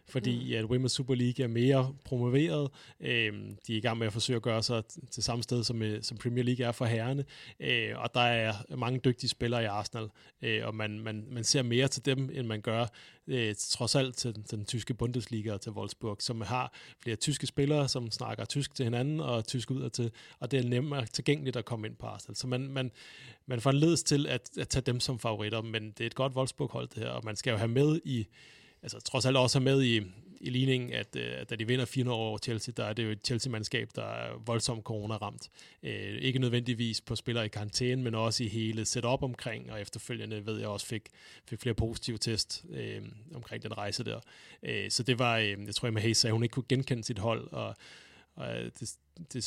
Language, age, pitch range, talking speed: Danish, 30-49, 110-130 Hz, 230 wpm